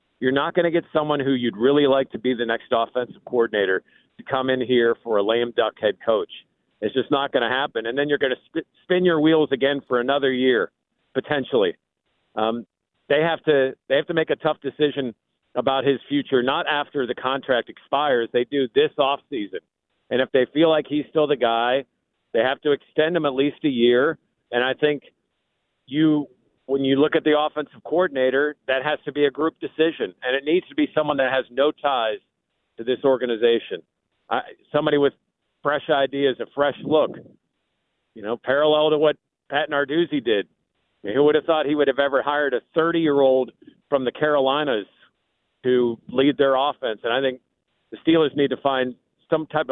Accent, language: American, English